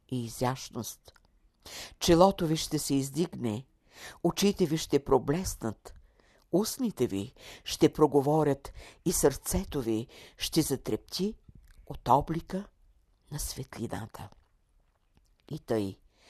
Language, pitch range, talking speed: Bulgarian, 110-155 Hz, 95 wpm